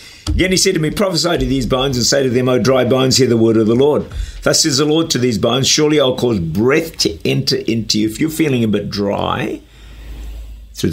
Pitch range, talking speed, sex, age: 90-135 Hz, 240 wpm, male, 50-69